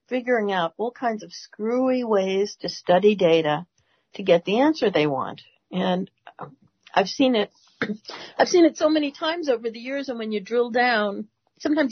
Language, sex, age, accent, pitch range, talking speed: English, female, 50-69, American, 200-255 Hz, 175 wpm